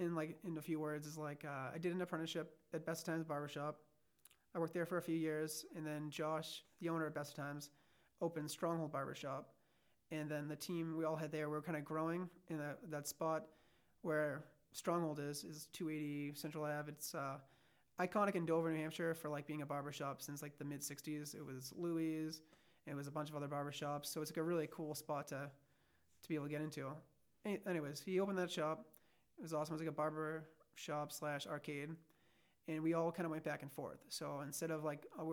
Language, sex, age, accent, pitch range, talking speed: English, male, 30-49, American, 150-165 Hz, 225 wpm